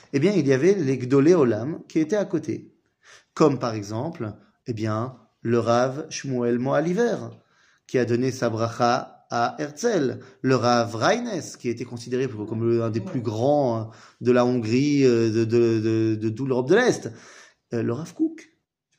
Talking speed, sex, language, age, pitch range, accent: 170 wpm, male, French, 30-49, 120-160 Hz, French